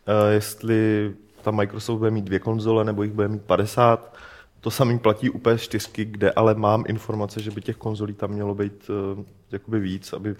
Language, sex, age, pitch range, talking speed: Czech, male, 20-39, 100-115 Hz, 190 wpm